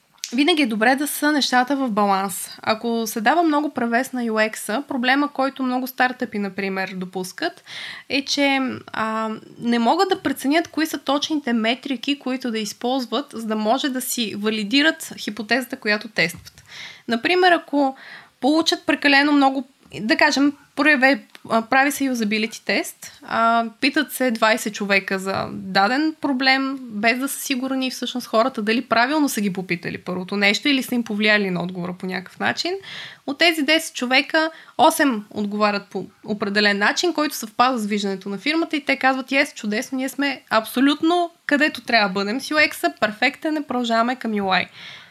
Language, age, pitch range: Bulgarian, 20-39, 220-285 Hz